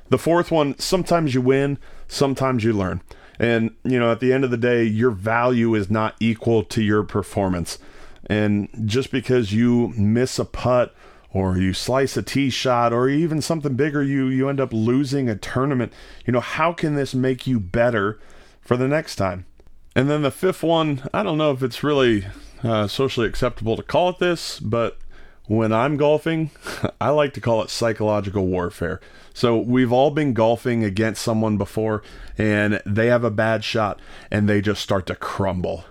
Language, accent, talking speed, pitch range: English, American, 185 wpm, 105-130 Hz